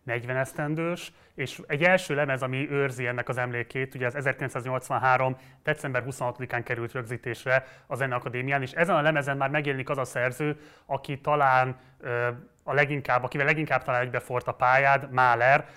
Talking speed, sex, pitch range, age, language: 155 wpm, male, 125-140 Hz, 30-49, Hungarian